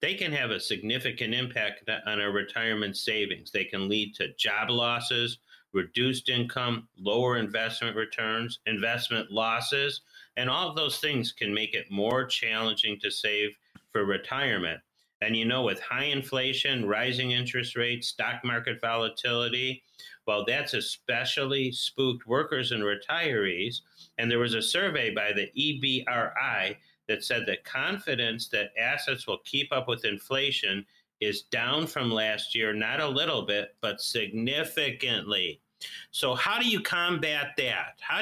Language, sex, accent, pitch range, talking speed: English, male, American, 110-135 Hz, 145 wpm